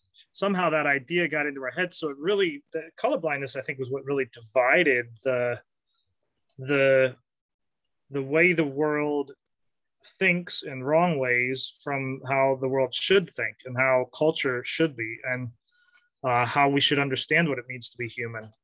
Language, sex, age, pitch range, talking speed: English, male, 30-49, 125-150 Hz, 165 wpm